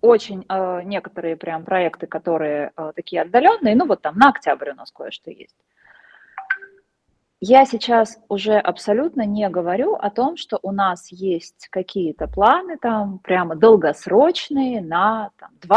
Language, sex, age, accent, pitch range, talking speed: Russian, female, 30-49, native, 180-270 Hz, 130 wpm